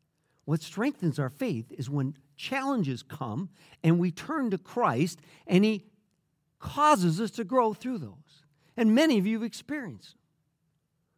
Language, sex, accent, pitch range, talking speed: English, male, American, 155-220 Hz, 145 wpm